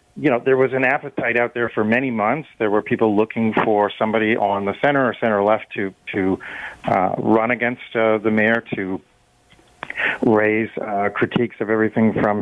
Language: English